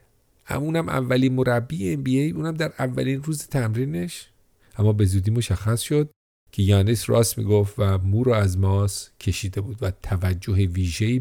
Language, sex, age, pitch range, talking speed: English, male, 40-59, 95-120 Hz, 155 wpm